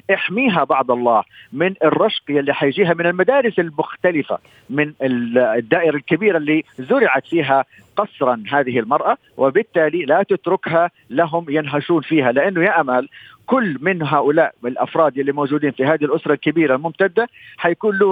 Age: 50-69